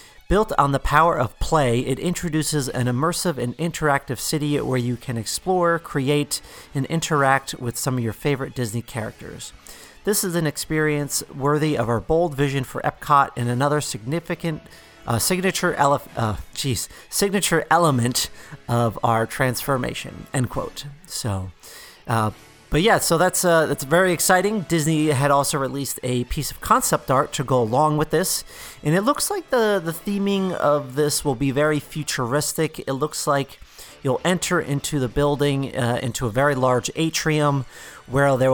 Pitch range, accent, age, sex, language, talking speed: 125-165 Hz, American, 40-59, male, English, 165 wpm